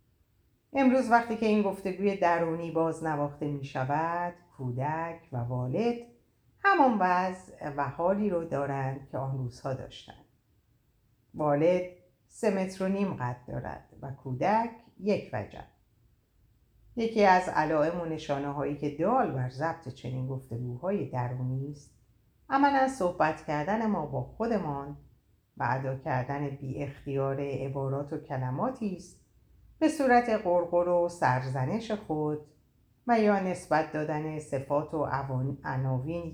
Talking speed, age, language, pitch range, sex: 120 wpm, 50-69, Persian, 130-180 Hz, female